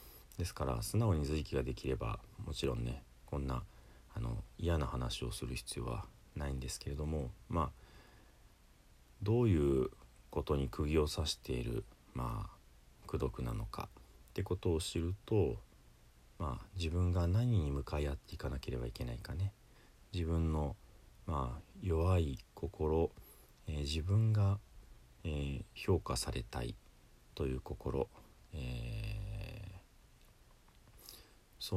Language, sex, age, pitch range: Japanese, male, 40-59, 70-100 Hz